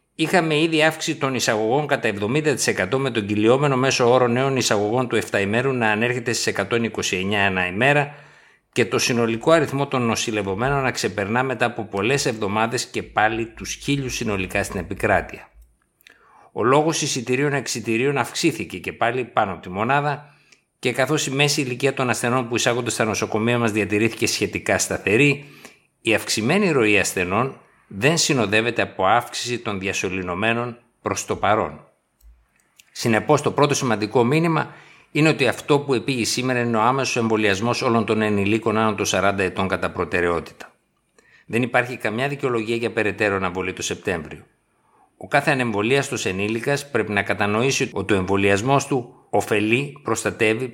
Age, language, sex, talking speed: 60-79, Greek, male, 150 wpm